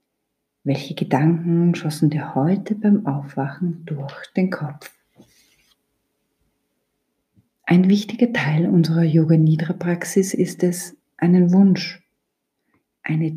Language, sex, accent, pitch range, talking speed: German, female, German, 150-195 Hz, 90 wpm